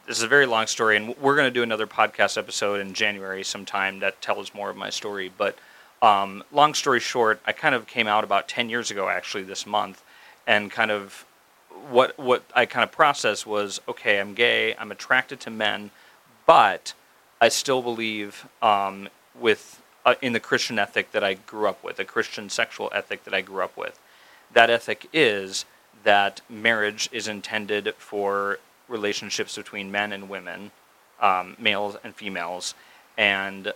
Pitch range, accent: 100-115 Hz, American